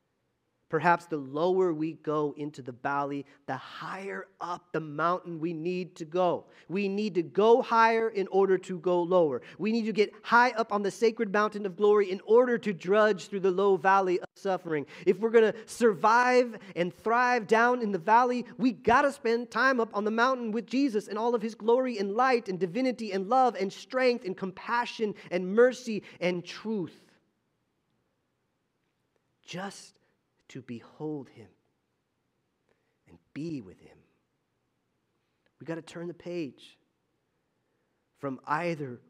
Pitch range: 175-230 Hz